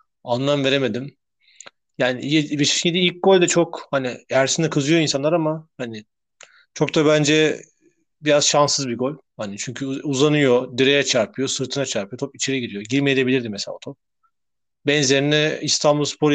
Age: 40-59